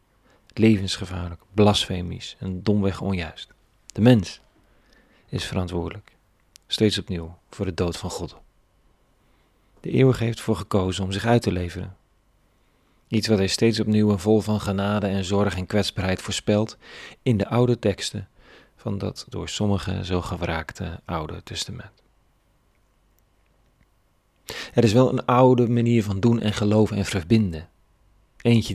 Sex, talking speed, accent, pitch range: male, 135 wpm, Dutch, 95-115 Hz